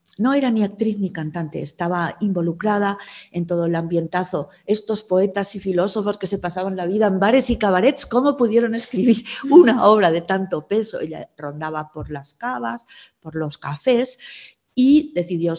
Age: 50-69